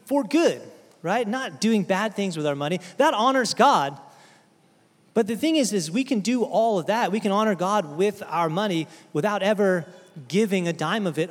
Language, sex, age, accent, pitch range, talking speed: English, male, 30-49, American, 185-235 Hz, 200 wpm